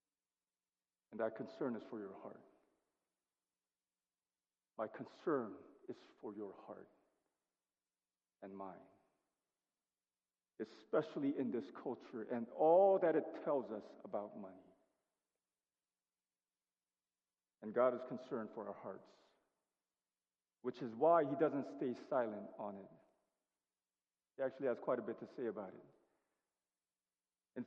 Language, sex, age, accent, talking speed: English, male, 50-69, American, 115 wpm